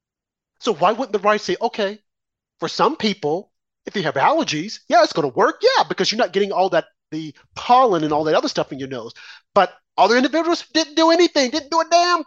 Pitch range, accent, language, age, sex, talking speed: 150-205 Hz, American, English, 40-59, male, 225 wpm